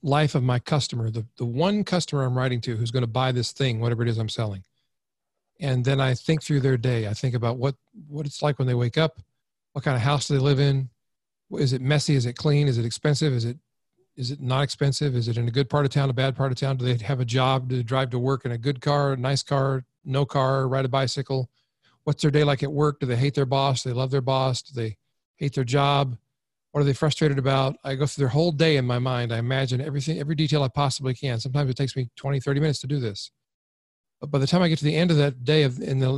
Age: 40-59